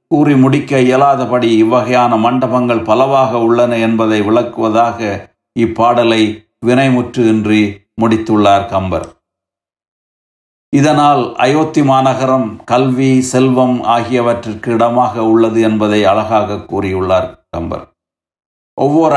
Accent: native